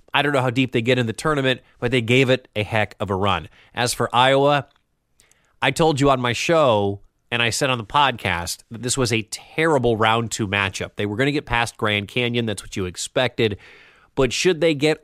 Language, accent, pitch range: English, American, 105-130 Hz